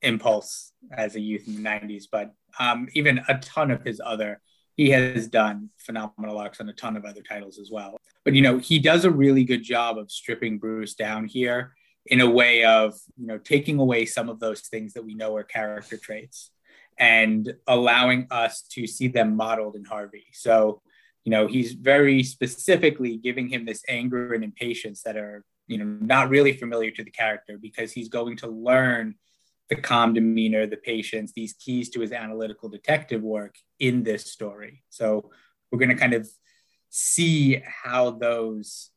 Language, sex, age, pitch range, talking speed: English, male, 20-39, 110-125 Hz, 185 wpm